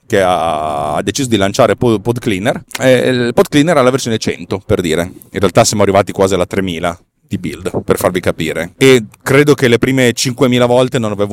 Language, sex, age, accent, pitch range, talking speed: Italian, male, 30-49, native, 100-135 Hz, 185 wpm